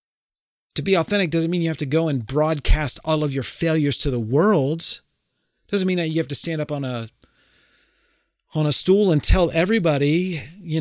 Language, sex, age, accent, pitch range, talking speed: English, male, 40-59, American, 120-160 Hz, 200 wpm